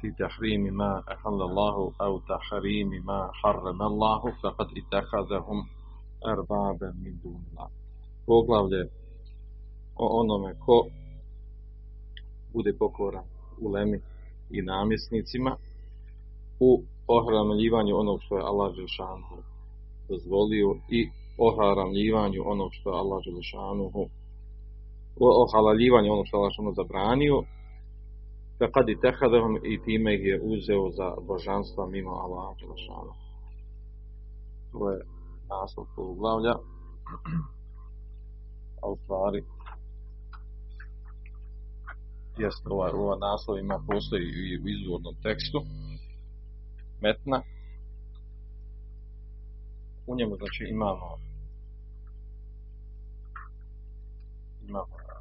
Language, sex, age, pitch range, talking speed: Croatian, male, 40-59, 100-105 Hz, 75 wpm